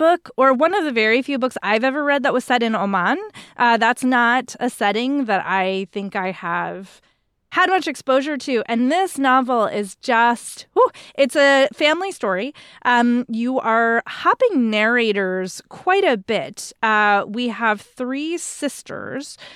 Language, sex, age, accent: English, female, 30-49, American